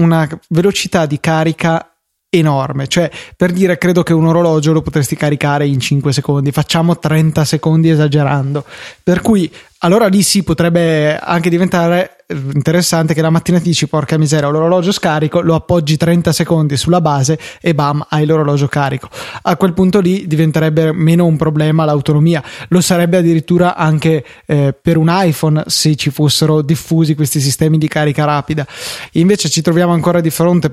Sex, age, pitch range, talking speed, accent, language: male, 20-39, 150-170 Hz, 165 wpm, native, Italian